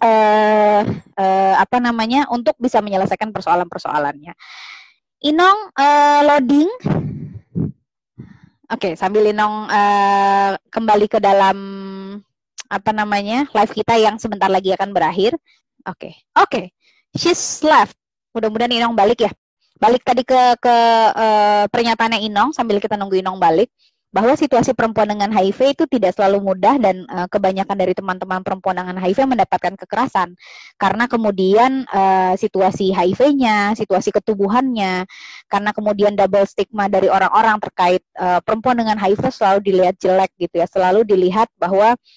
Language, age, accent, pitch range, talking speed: Indonesian, 20-39, native, 190-230 Hz, 135 wpm